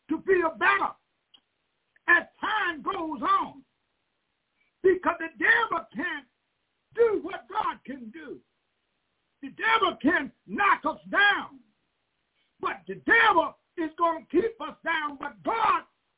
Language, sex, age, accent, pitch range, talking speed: English, male, 50-69, American, 315-410 Hz, 125 wpm